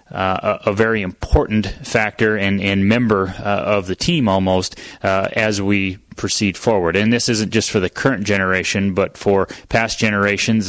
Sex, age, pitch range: male, 30-49, 100-110 Hz